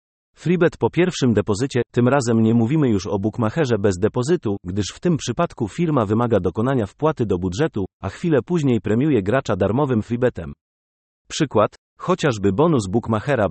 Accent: native